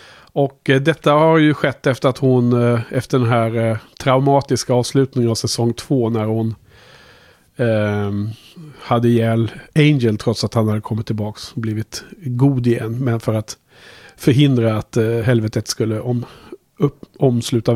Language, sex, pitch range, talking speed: Swedish, male, 115-140 Hz, 130 wpm